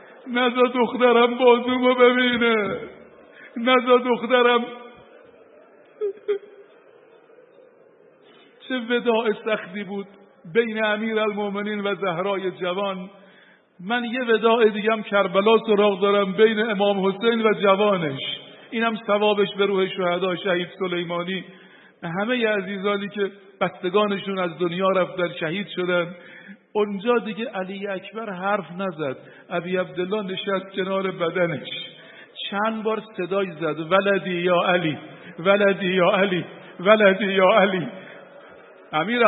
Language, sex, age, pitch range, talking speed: Persian, male, 50-69, 190-240 Hz, 110 wpm